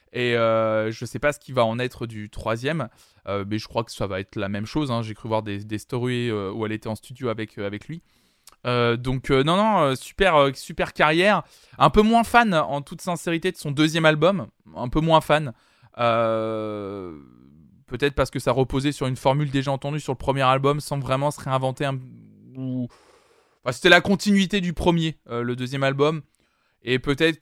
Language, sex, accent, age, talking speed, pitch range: French, male, French, 20-39, 210 wpm, 120-150 Hz